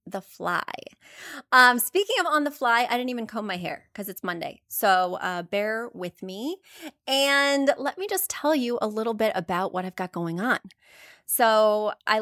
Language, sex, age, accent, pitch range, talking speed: English, female, 30-49, American, 190-250 Hz, 190 wpm